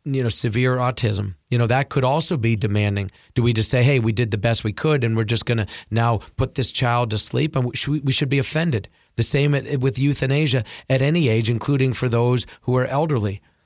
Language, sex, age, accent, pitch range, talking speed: English, male, 40-59, American, 115-135 Hz, 225 wpm